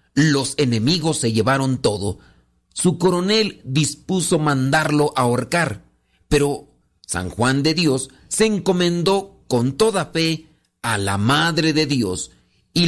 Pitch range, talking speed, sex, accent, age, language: 110-160 Hz, 125 wpm, male, Mexican, 40-59, Spanish